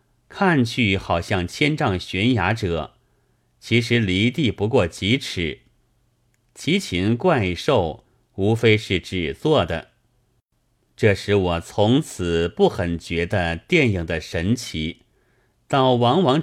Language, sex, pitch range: Chinese, male, 90-125 Hz